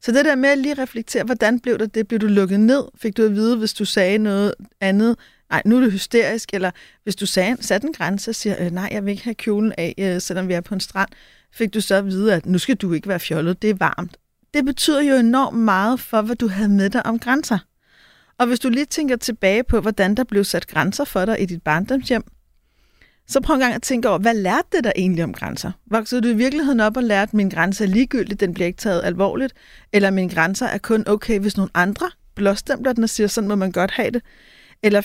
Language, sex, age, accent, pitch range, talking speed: Danish, female, 30-49, native, 195-245 Hz, 250 wpm